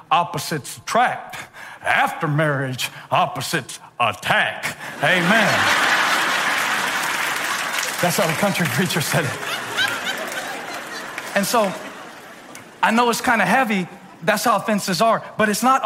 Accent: American